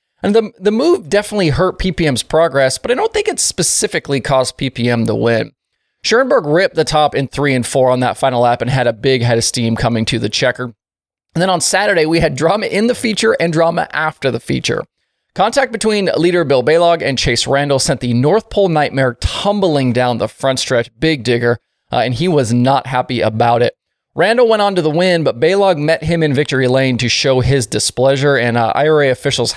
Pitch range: 125-175 Hz